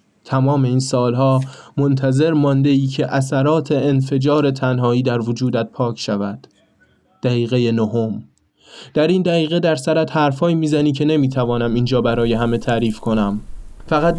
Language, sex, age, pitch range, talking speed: Persian, male, 20-39, 120-150 Hz, 130 wpm